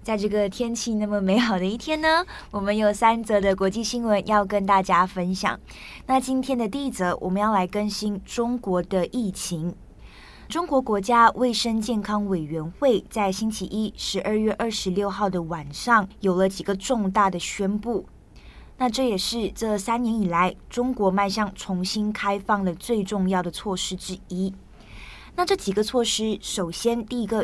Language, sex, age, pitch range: Chinese, female, 20-39, 190-230 Hz